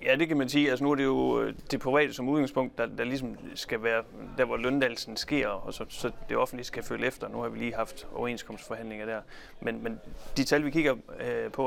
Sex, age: male, 30-49